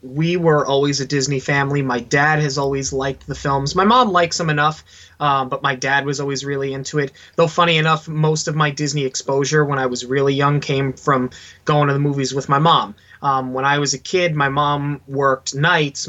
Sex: male